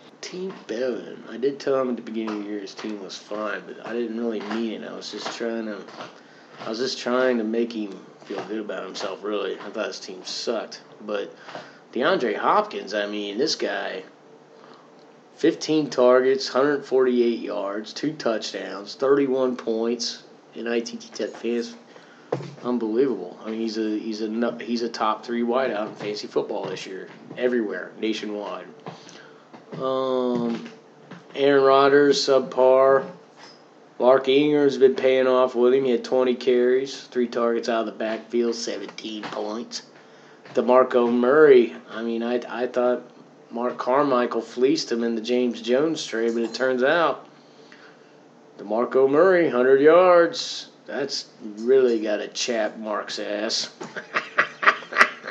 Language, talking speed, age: English, 150 wpm, 20-39